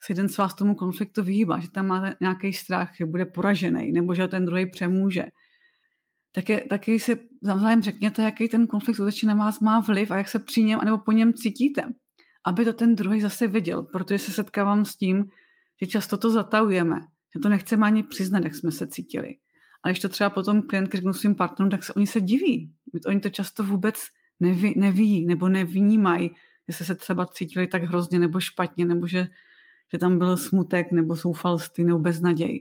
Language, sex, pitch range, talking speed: Czech, female, 180-210 Hz, 195 wpm